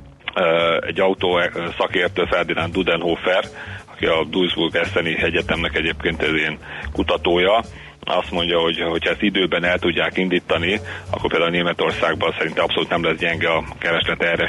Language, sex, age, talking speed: Hungarian, male, 40-59, 135 wpm